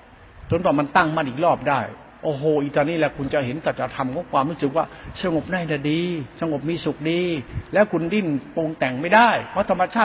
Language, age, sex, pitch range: Thai, 60-79, male, 155-195 Hz